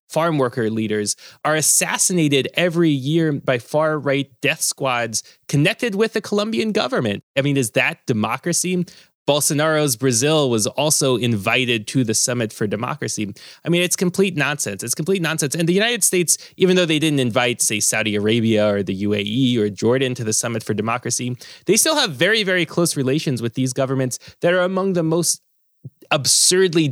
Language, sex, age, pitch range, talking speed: English, male, 20-39, 115-155 Hz, 170 wpm